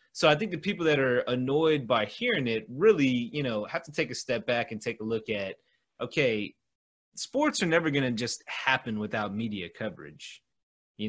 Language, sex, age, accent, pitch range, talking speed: English, male, 30-49, American, 110-155 Hz, 200 wpm